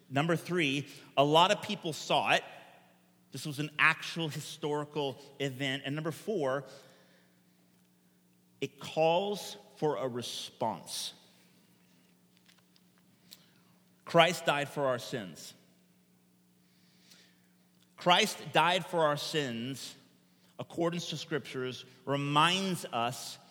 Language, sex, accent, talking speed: English, male, American, 95 wpm